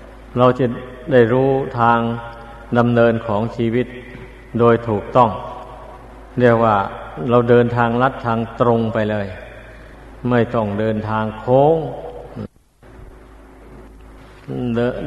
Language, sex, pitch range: Thai, male, 110-125 Hz